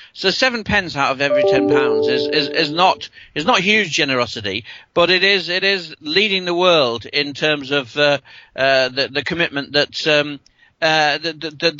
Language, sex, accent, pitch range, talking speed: English, male, British, 135-180 Hz, 180 wpm